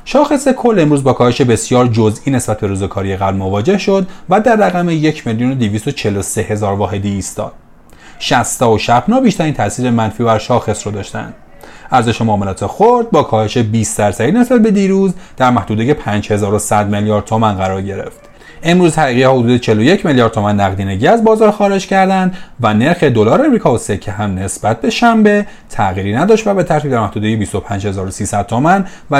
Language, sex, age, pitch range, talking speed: Persian, male, 30-49, 105-165 Hz, 170 wpm